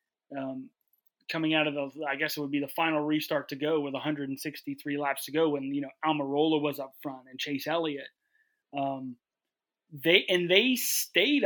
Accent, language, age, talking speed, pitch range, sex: American, English, 30-49, 185 wpm, 140-165 Hz, male